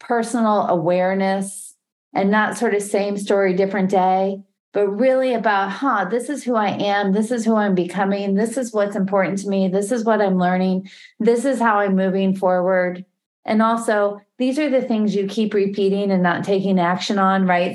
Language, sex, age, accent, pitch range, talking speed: English, female, 30-49, American, 185-235 Hz, 190 wpm